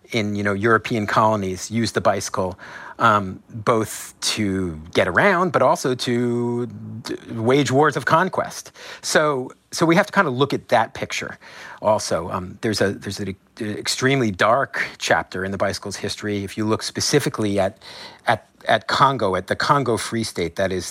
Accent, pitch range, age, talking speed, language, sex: American, 95-120 Hz, 40-59, 170 wpm, English, male